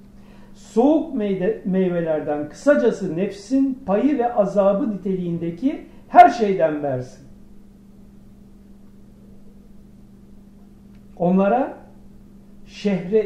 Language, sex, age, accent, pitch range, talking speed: Turkish, male, 60-79, native, 150-205 Hz, 60 wpm